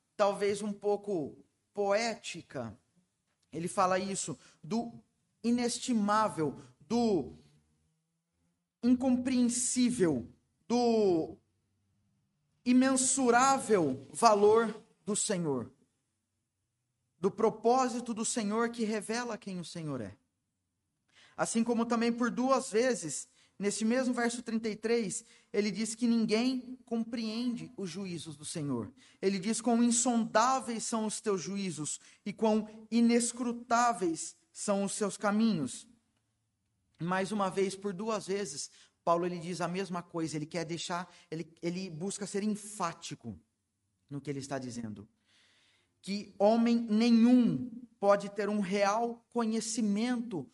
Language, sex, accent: Portuguese, male, Brazilian